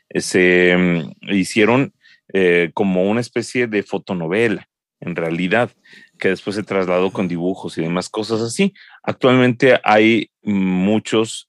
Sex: male